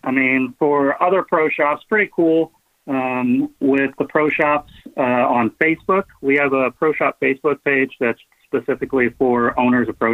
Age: 30-49